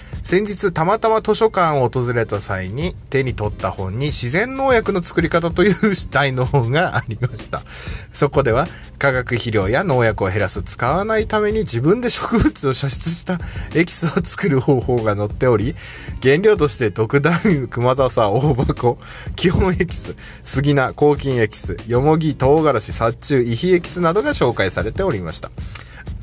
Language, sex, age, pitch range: Japanese, male, 20-39, 115-165 Hz